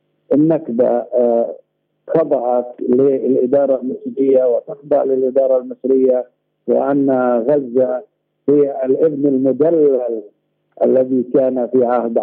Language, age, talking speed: Arabic, 50-69, 80 wpm